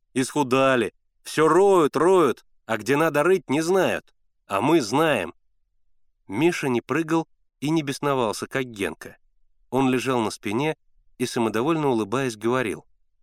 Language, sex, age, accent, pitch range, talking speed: Russian, male, 30-49, native, 110-170 Hz, 130 wpm